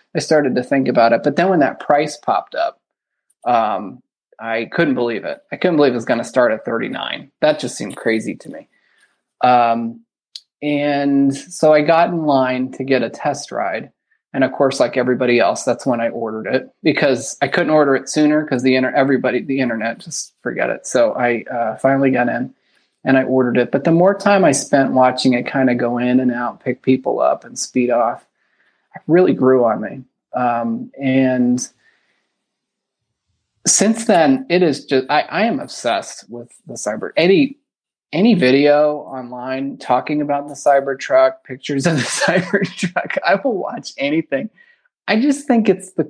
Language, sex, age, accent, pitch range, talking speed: English, male, 30-49, American, 125-160 Hz, 185 wpm